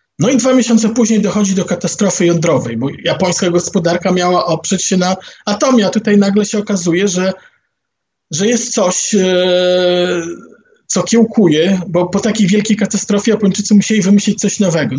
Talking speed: 150 wpm